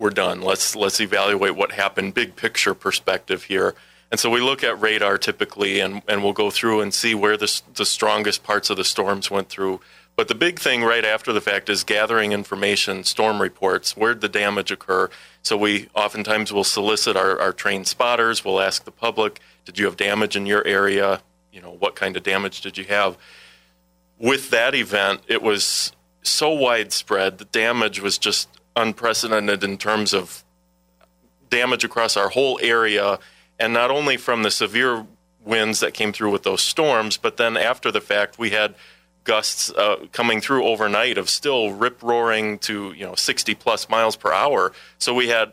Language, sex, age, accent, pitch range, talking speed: English, male, 30-49, American, 95-115 Hz, 185 wpm